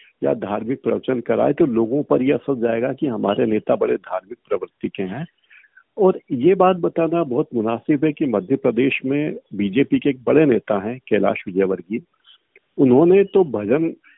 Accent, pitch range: native, 115-165 Hz